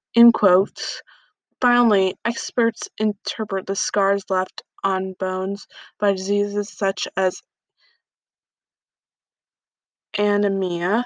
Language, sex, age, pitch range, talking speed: English, female, 20-39, 195-220 Hz, 80 wpm